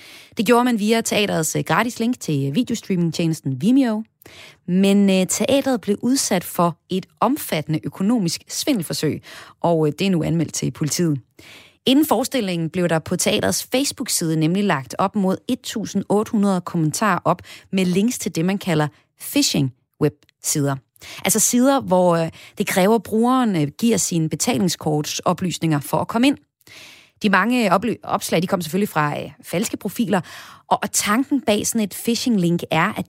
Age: 30-49